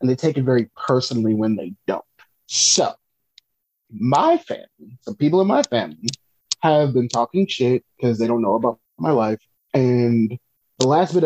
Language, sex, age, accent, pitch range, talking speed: English, male, 30-49, American, 115-145 Hz, 170 wpm